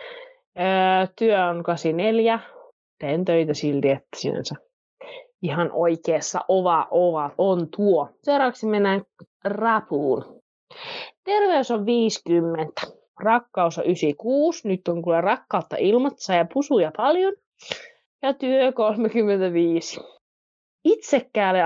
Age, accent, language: 20-39, native, Finnish